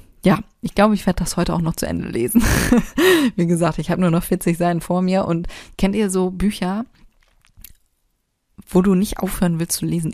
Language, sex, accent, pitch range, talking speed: German, female, German, 170-200 Hz, 200 wpm